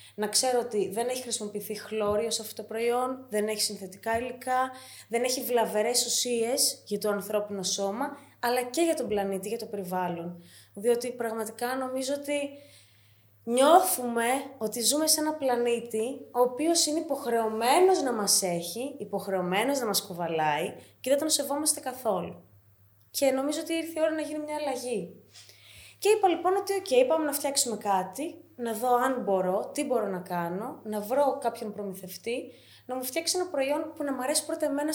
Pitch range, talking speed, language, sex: 195-280 Hz, 170 wpm, Greek, female